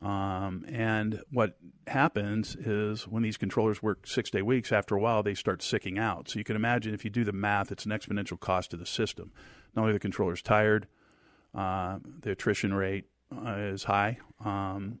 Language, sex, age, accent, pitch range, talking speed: English, male, 50-69, American, 95-110 Hz, 190 wpm